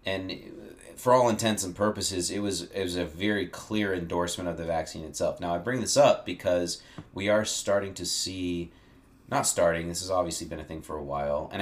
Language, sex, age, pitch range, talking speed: English, male, 30-49, 85-105 Hz, 210 wpm